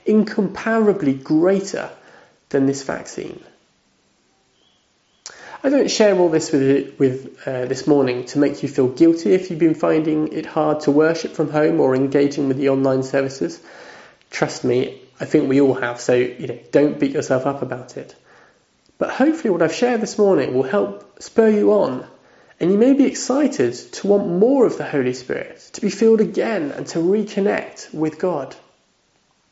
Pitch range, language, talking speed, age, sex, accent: 135-210 Hz, English, 175 wpm, 30-49, male, British